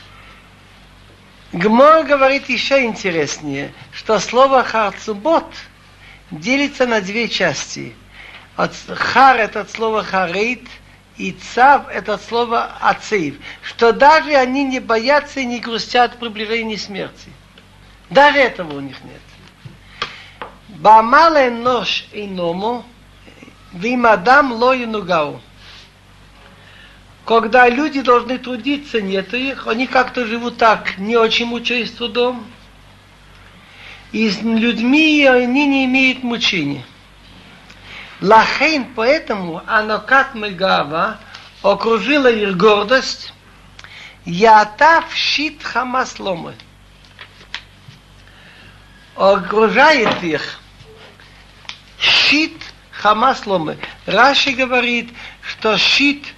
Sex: male